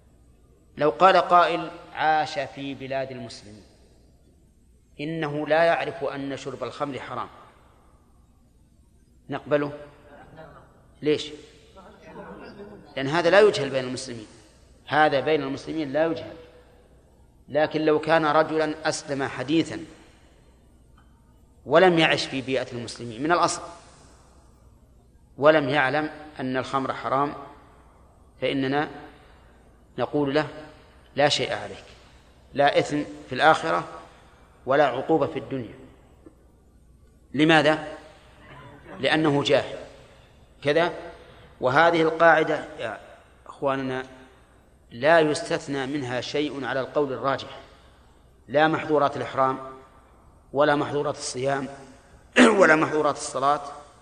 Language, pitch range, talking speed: Arabic, 125-155 Hz, 90 wpm